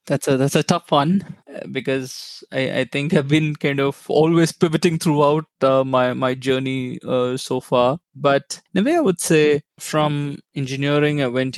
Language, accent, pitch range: English, Indian, 125-150 Hz